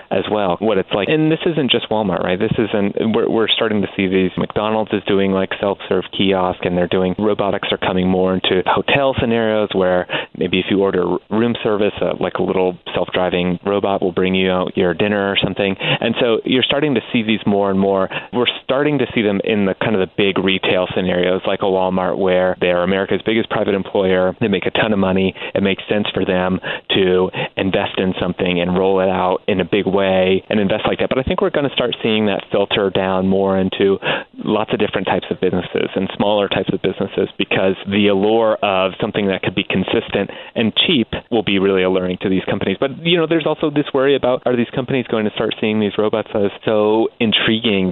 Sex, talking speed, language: male, 220 wpm, English